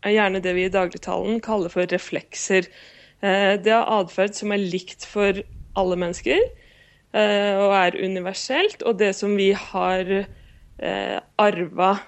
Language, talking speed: English, 150 wpm